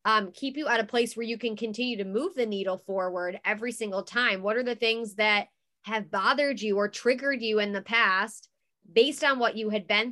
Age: 20-39